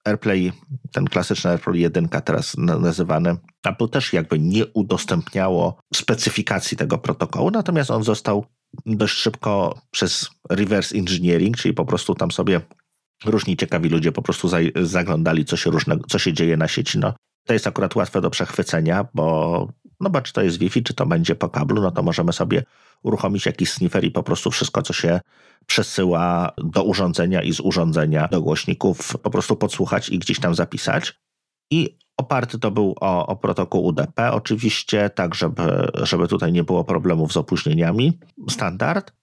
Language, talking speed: Polish, 165 wpm